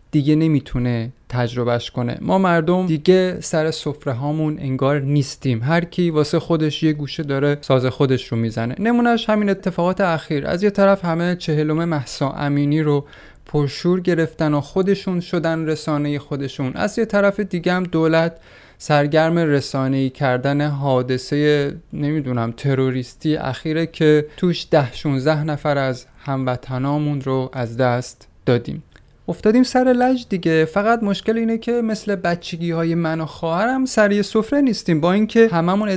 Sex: male